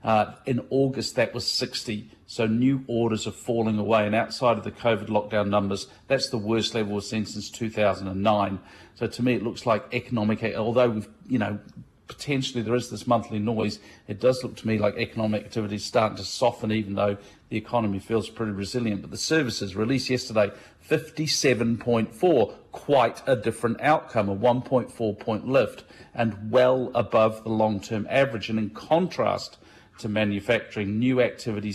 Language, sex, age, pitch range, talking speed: English, male, 50-69, 105-125 Hz, 170 wpm